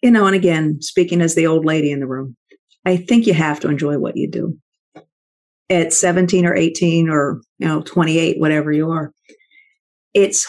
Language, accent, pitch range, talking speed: English, American, 170-225 Hz, 190 wpm